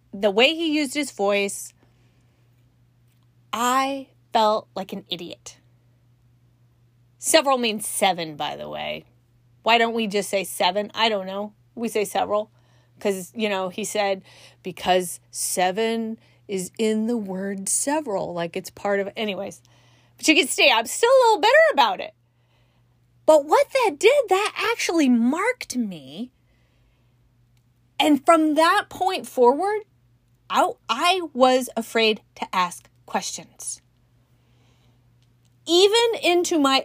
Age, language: 30-49, English